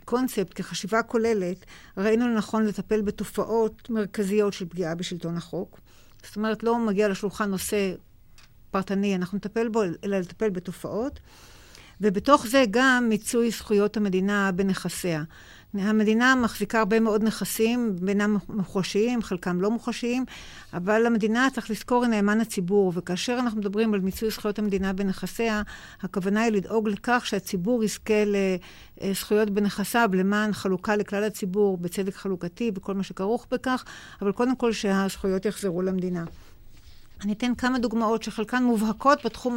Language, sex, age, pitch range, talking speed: Hebrew, female, 50-69, 195-230 Hz, 135 wpm